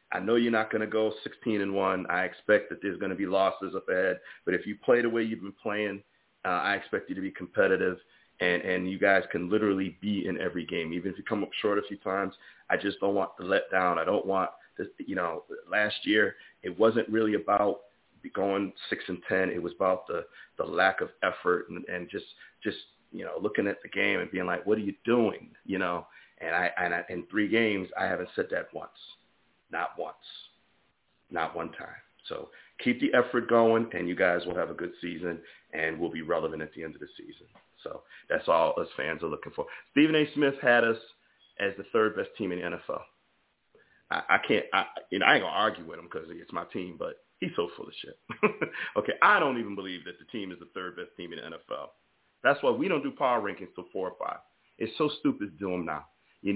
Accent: American